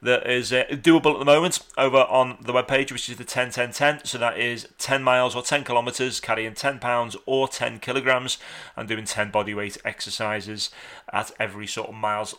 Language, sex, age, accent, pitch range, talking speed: English, male, 30-49, British, 110-130 Hz, 195 wpm